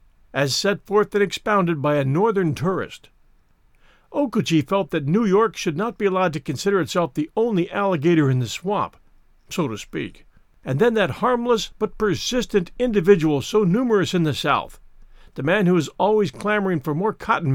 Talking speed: 175 wpm